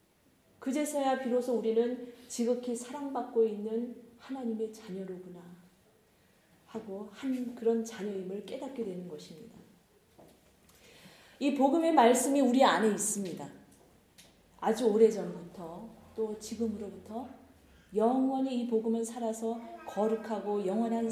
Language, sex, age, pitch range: Korean, female, 30-49, 210-255 Hz